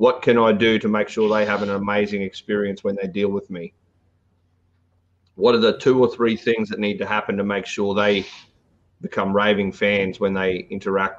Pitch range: 100-115 Hz